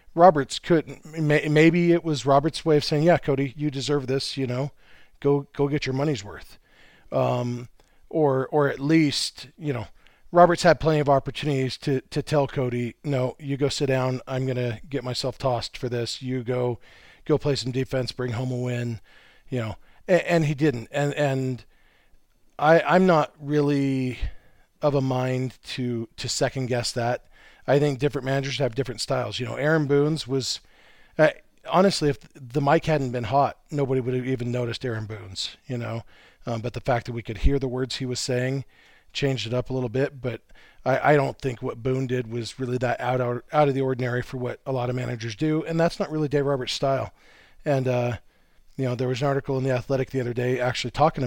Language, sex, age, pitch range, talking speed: English, male, 40-59, 125-145 Hz, 205 wpm